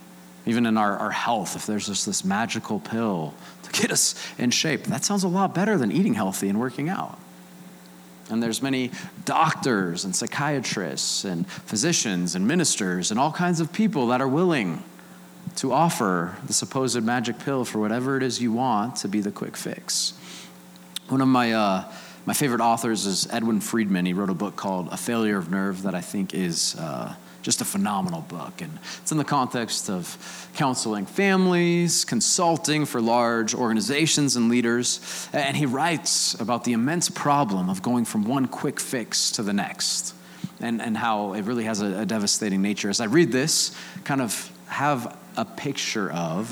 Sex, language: male, English